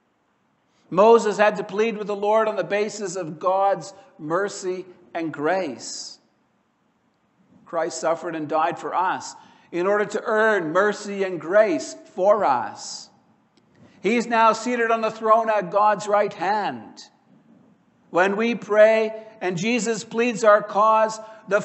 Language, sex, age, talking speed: English, male, 60-79, 135 wpm